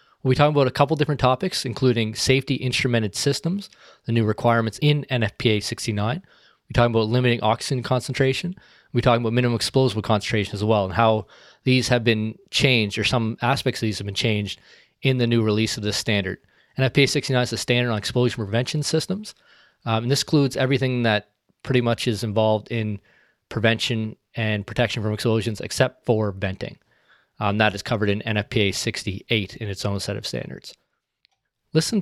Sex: male